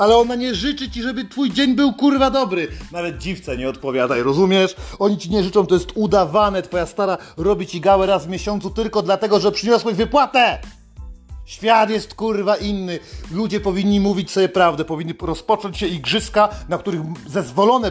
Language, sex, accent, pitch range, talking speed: Polish, male, native, 175-230 Hz, 175 wpm